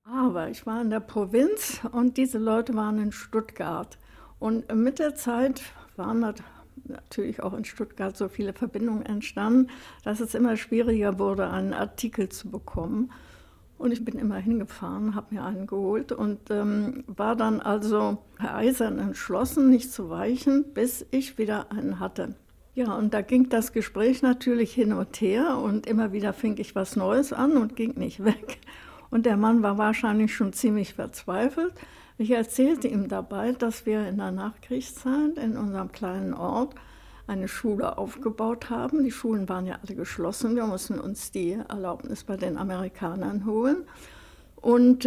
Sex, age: female, 60-79